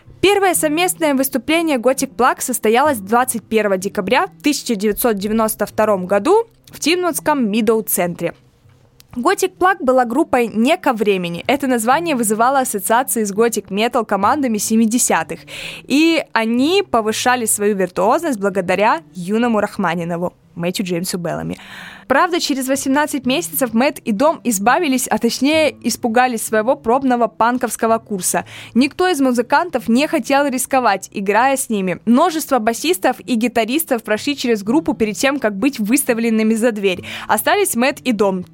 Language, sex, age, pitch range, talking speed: Russian, female, 20-39, 210-275 Hz, 130 wpm